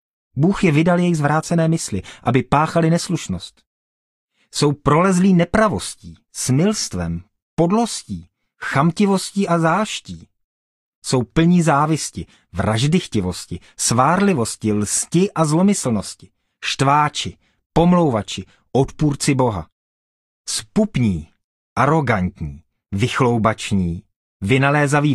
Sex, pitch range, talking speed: male, 95-155 Hz, 80 wpm